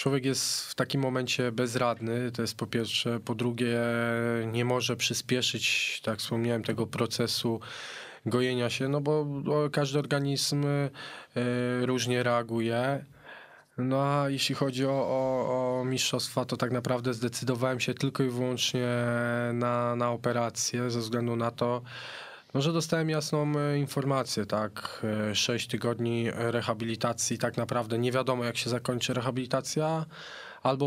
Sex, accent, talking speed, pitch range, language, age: male, native, 135 wpm, 120-135 Hz, Polish, 20-39